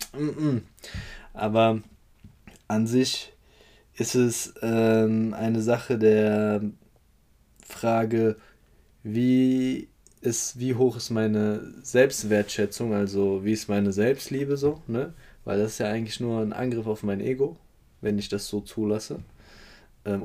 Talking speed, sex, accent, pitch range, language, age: 120 wpm, male, German, 105-130 Hz, German, 20-39